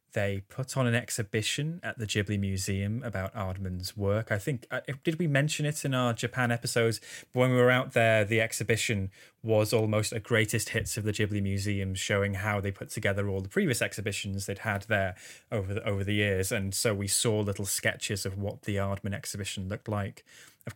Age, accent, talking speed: 20-39, British, 205 wpm